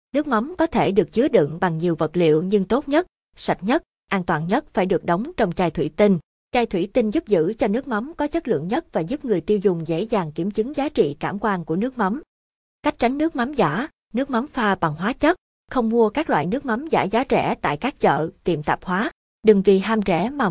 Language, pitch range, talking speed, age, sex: Vietnamese, 180-245 Hz, 250 wpm, 20-39, female